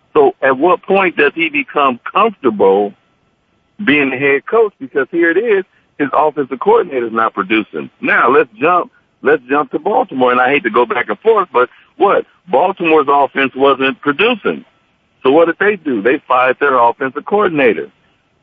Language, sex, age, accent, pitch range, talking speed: English, male, 60-79, American, 130-185 Hz, 175 wpm